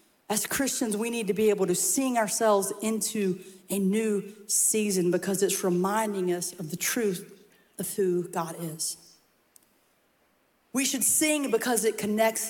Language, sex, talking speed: English, female, 150 wpm